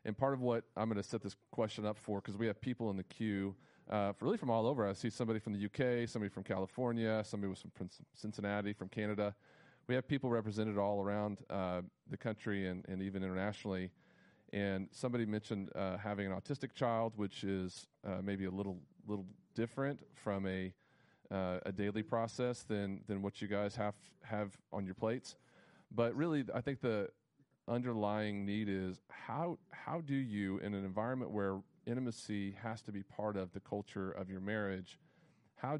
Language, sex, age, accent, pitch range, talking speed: English, male, 40-59, American, 100-120 Hz, 195 wpm